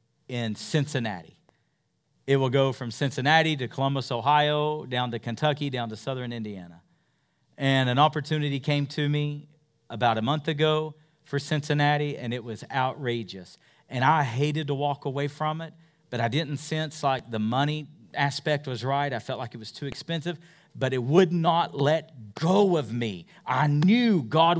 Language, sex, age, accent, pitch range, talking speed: English, male, 40-59, American, 120-160 Hz, 170 wpm